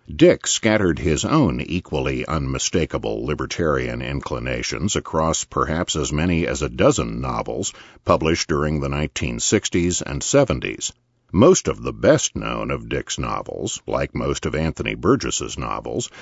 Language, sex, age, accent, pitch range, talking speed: English, male, 50-69, American, 75-95 Hz, 130 wpm